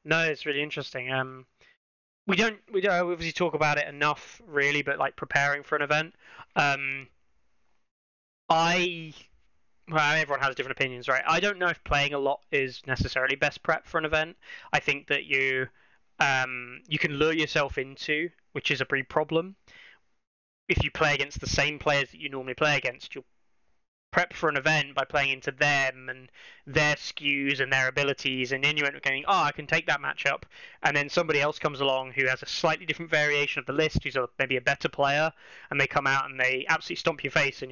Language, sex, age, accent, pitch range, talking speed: English, male, 20-39, British, 130-155 Hz, 200 wpm